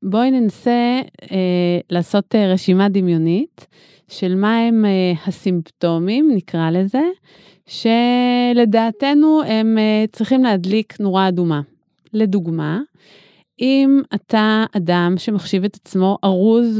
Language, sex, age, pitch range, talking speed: Hebrew, female, 30-49, 175-220 Hz, 105 wpm